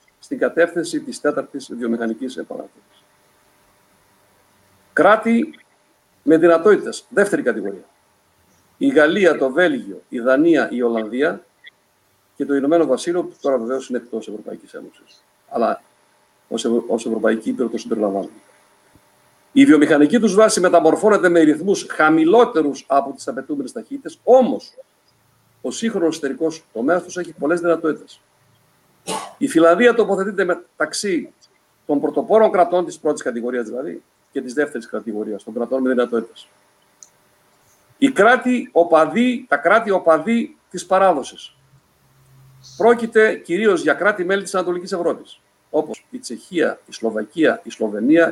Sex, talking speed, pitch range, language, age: male, 120 wpm, 120-195 Hz, Greek, 50-69